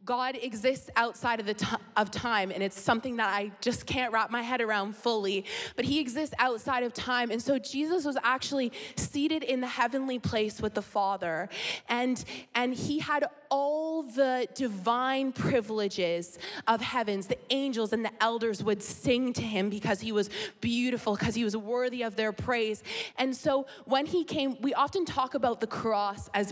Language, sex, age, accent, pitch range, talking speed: English, female, 20-39, American, 210-255 Hz, 185 wpm